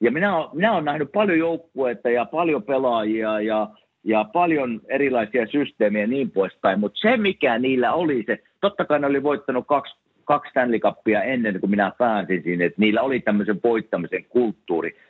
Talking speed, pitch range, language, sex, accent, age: 170 wpm, 105-145 Hz, Finnish, male, native, 50-69